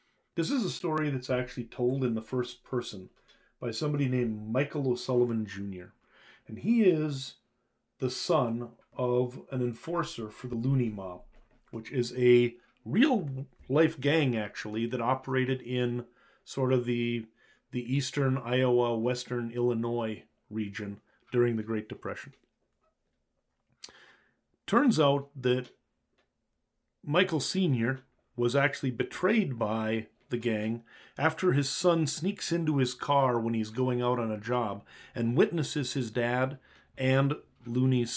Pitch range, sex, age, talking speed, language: 115-140 Hz, male, 40-59, 125 wpm, English